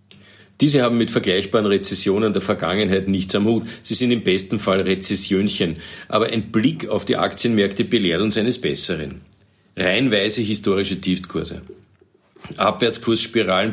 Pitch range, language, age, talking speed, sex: 95-115 Hz, German, 50-69, 130 wpm, male